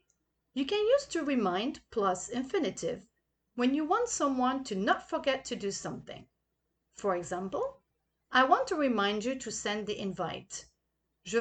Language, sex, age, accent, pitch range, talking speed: English, female, 40-59, Belgian, 200-290 Hz, 155 wpm